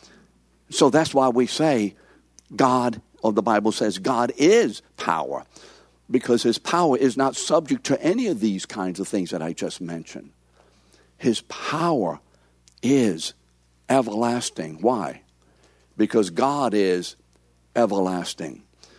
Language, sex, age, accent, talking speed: English, male, 60-79, American, 125 wpm